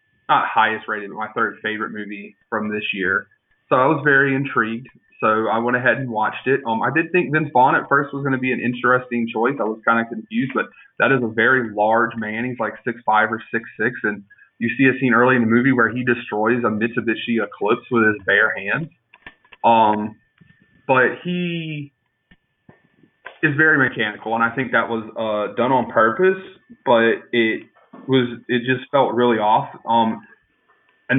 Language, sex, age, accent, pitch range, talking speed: English, male, 30-49, American, 110-130 Hz, 195 wpm